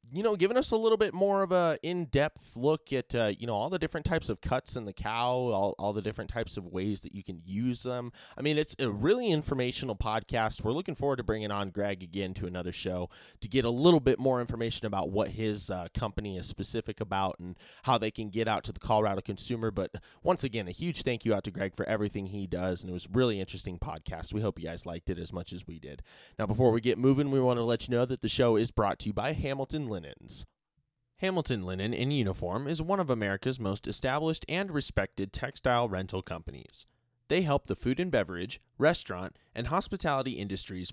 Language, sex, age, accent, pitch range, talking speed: English, male, 20-39, American, 95-135 Hz, 230 wpm